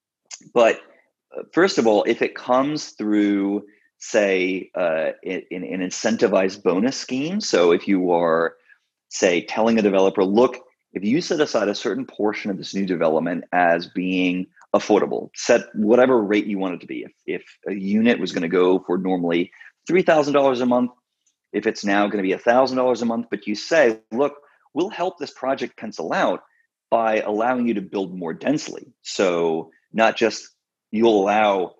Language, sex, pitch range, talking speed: English, male, 100-125 Hz, 175 wpm